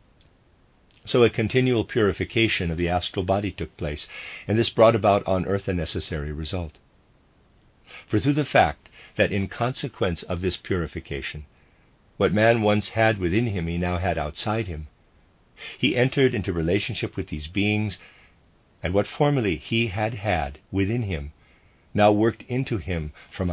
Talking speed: 155 wpm